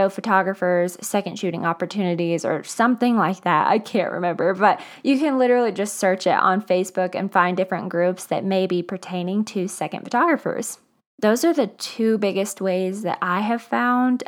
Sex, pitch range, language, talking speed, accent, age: female, 190-235 Hz, English, 170 wpm, American, 20-39